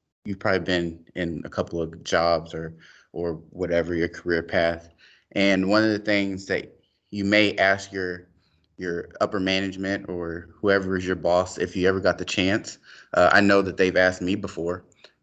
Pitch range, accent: 90-115 Hz, American